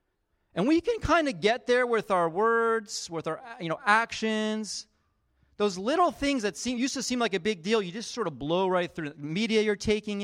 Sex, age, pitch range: male, 30-49, 145-220 Hz